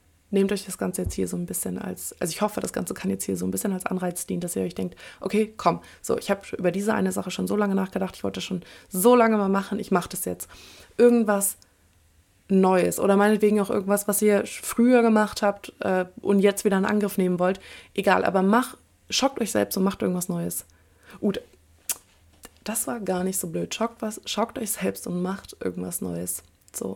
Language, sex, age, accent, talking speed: German, female, 20-39, German, 220 wpm